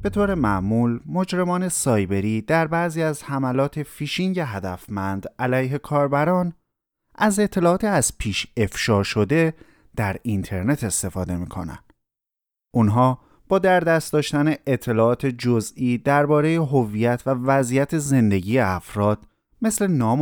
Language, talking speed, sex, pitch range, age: Persian, 115 wpm, male, 105-155 Hz, 30-49